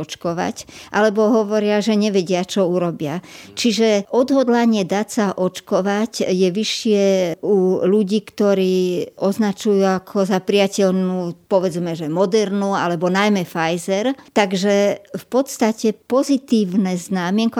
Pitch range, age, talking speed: 180-210 Hz, 50-69, 110 wpm